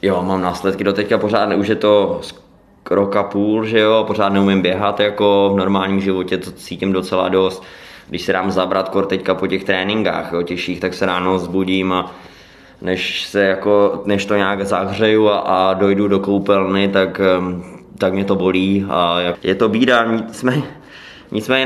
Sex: male